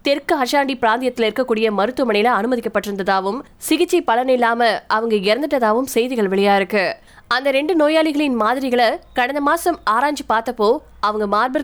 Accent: native